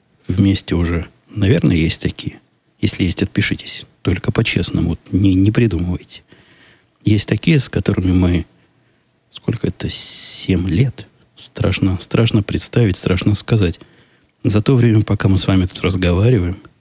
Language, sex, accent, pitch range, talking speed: Russian, male, native, 90-110 Hz, 130 wpm